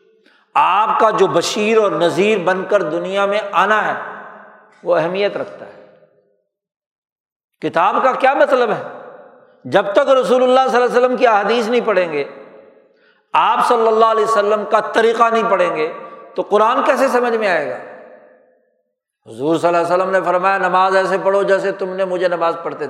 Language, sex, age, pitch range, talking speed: Urdu, male, 60-79, 180-275 Hz, 175 wpm